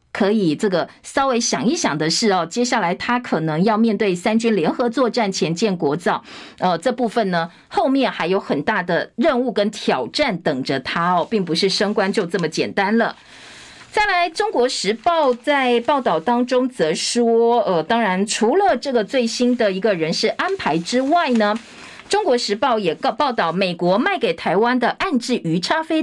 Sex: female